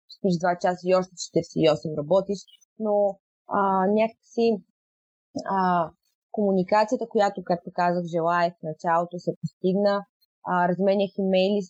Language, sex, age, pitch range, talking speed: Bulgarian, female, 20-39, 180-210 Hz, 120 wpm